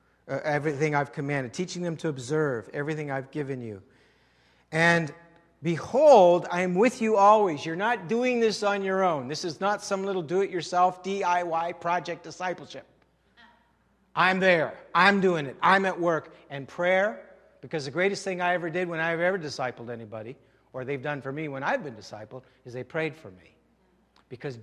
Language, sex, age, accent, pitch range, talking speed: English, male, 60-79, American, 150-210 Hz, 175 wpm